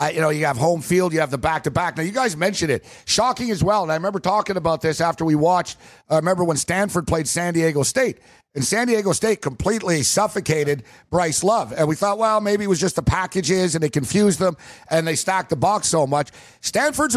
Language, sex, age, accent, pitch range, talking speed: English, male, 50-69, American, 155-200 Hz, 230 wpm